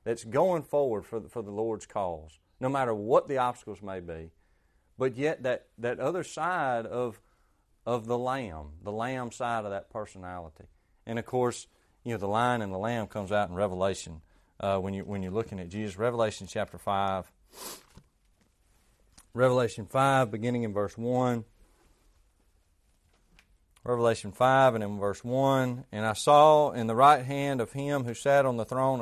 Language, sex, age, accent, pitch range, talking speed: English, male, 40-59, American, 105-135 Hz, 170 wpm